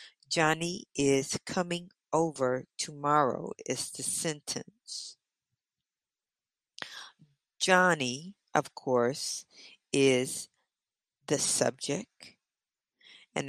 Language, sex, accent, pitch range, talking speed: English, female, American, 135-185 Hz, 65 wpm